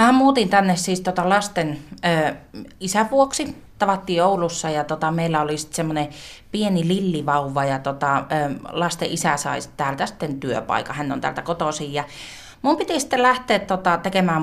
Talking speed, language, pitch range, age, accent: 160 wpm, Finnish, 145-185 Hz, 30-49, native